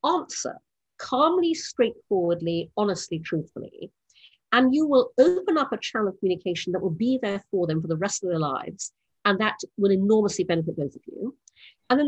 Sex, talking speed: female, 180 wpm